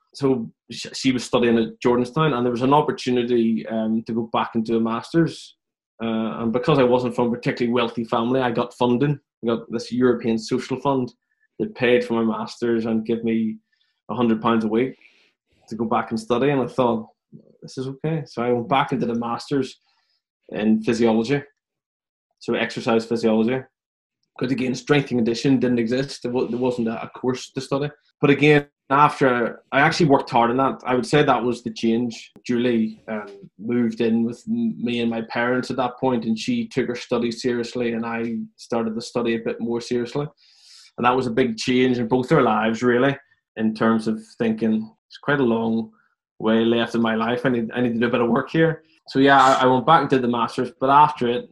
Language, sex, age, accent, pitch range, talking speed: English, male, 20-39, Irish, 115-130 Hz, 205 wpm